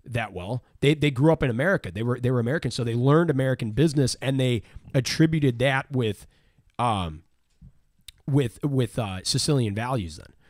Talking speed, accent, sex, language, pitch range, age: 170 wpm, American, male, English, 115-145 Hz, 30-49